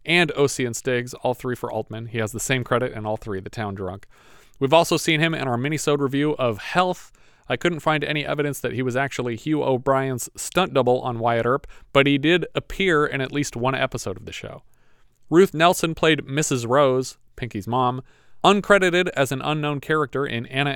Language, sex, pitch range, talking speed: English, male, 125-150 Hz, 200 wpm